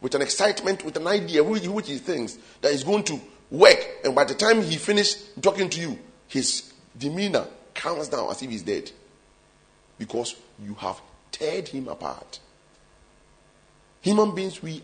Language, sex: English, male